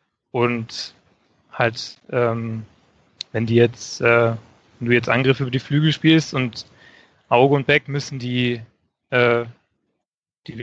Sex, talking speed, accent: male, 130 wpm, German